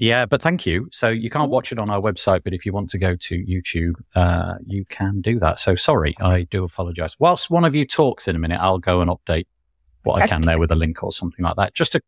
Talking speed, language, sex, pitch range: 275 wpm, English, male, 95-130 Hz